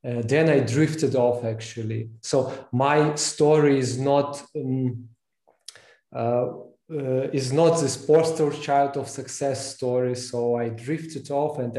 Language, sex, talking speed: English, male, 135 wpm